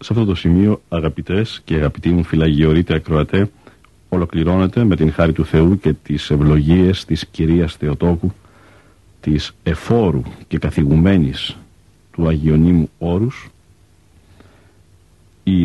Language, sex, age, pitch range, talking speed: Greek, male, 50-69, 85-100 Hz, 115 wpm